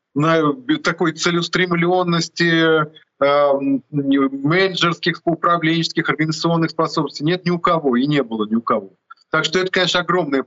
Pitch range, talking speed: 135-165 Hz, 130 wpm